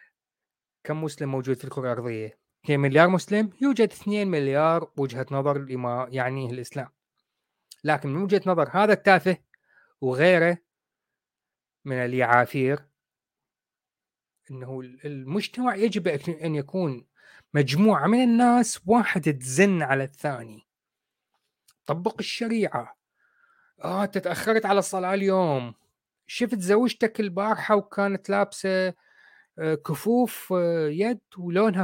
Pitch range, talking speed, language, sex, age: 150-225 Hz, 95 wpm, Arabic, male, 30-49